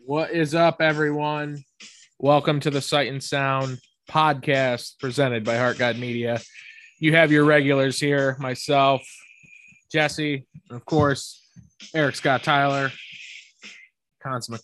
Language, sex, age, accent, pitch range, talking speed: English, male, 20-39, American, 135-175 Hz, 120 wpm